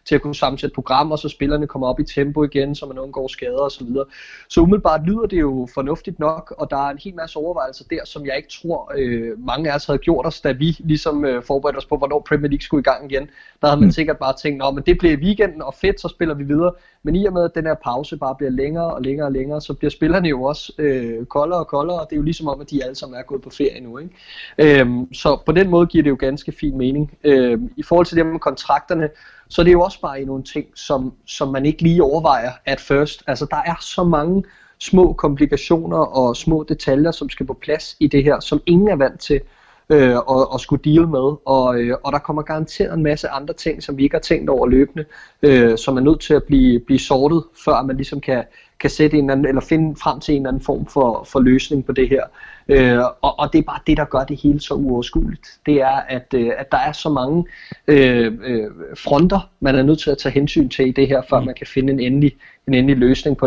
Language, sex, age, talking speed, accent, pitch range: Danish, male, 20-39, 245 wpm, native, 135-155 Hz